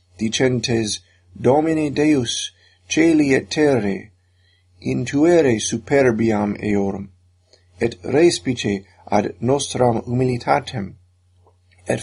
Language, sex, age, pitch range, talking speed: English, male, 50-69, 95-130 Hz, 75 wpm